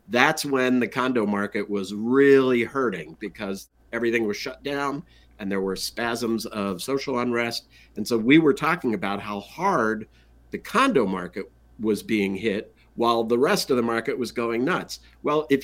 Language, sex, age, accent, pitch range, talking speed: English, male, 50-69, American, 105-140 Hz, 175 wpm